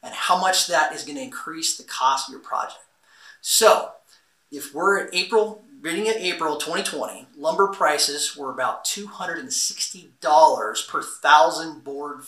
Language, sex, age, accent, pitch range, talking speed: English, male, 30-49, American, 145-220 Hz, 140 wpm